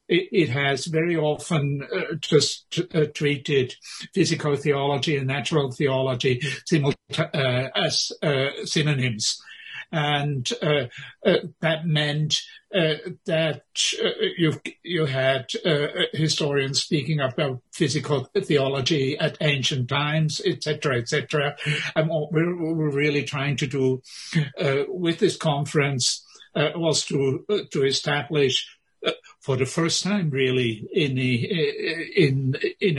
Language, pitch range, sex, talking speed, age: English, 135-160 Hz, male, 115 wpm, 60-79